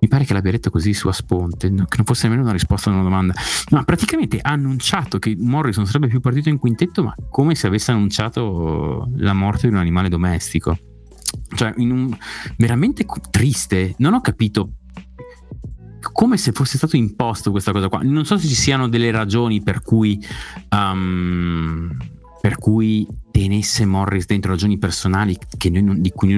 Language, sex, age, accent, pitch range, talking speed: Italian, male, 30-49, native, 90-120 Hz, 180 wpm